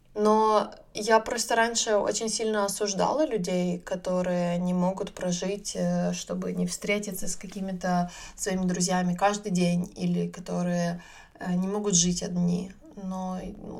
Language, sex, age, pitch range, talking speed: Ukrainian, female, 20-39, 175-205 Hz, 125 wpm